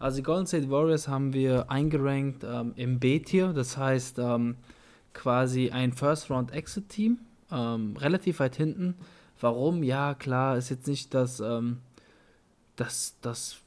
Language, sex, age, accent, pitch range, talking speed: German, male, 20-39, German, 120-150 Hz, 135 wpm